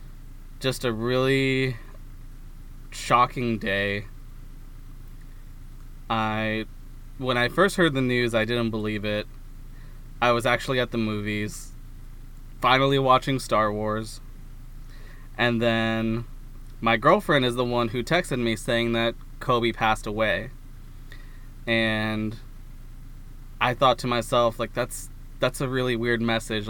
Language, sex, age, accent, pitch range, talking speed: English, male, 20-39, American, 115-130 Hz, 120 wpm